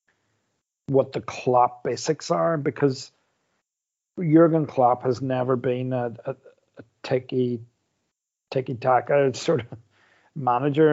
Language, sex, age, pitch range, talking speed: English, male, 40-59, 125-145 Hz, 110 wpm